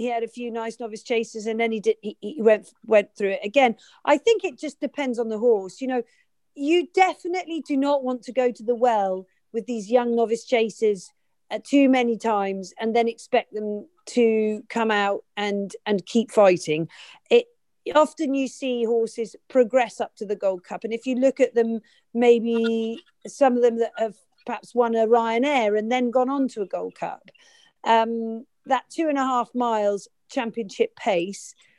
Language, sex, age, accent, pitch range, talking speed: English, female, 40-59, British, 210-265 Hz, 195 wpm